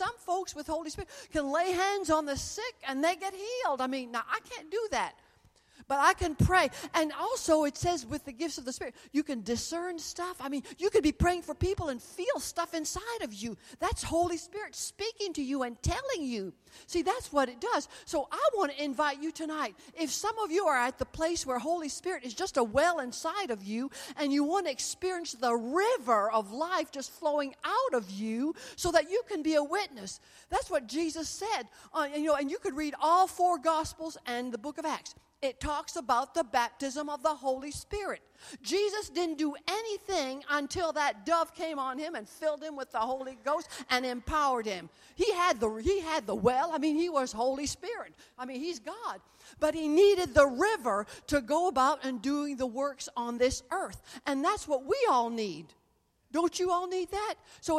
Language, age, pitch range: English, 50-69, 270-355 Hz